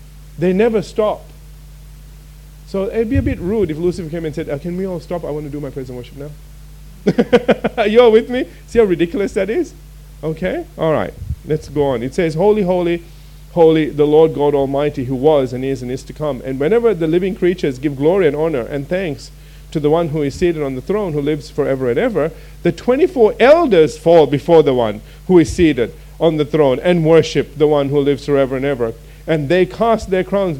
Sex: male